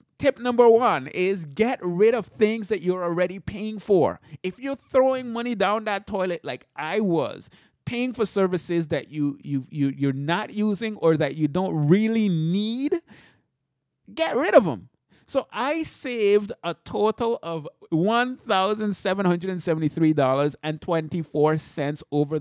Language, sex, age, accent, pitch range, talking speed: English, male, 30-49, American, 150-215 Hz, 130 wpm